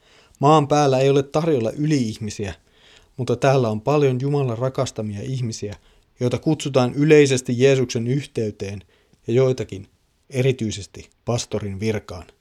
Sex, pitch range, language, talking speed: male, 105-135 Hz, Finnish, 110 wpm